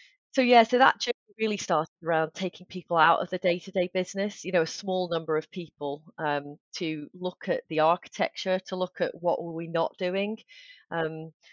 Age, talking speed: 30-49, 205 wpm